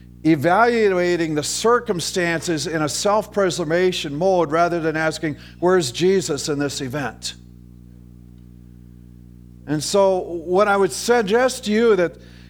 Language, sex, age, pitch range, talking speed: English, male, 50-69, 140-200 Hz, 120 wpm